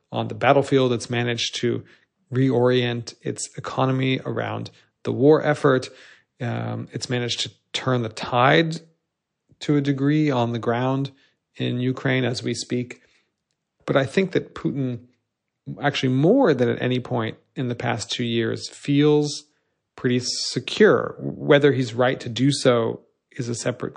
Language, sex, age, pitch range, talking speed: English, male, 40-59, 120-145 Hz, 150 wpm